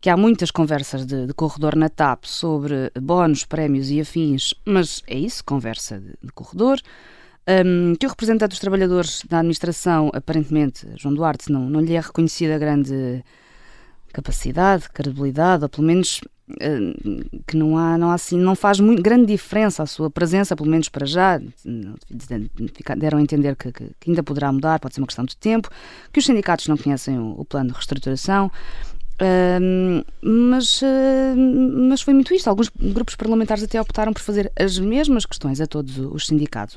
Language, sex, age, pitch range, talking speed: Portuguese, female, 20-39, 145-205 Hz, 175 wpm